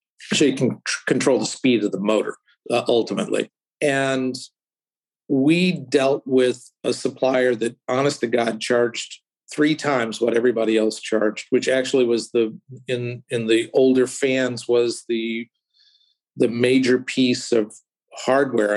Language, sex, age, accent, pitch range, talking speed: English, male, 50-69, American, 120-140 Hz, 140 wpm